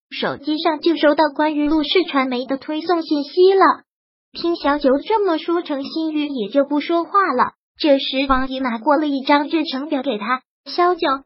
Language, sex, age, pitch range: Chinese, male, 20-39, 270-330 Hz